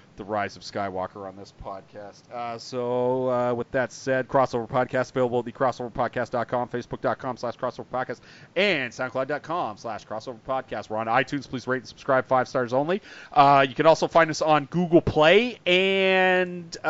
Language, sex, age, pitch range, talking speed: English, male, 30-49, 110-145 Hz, 180 wpm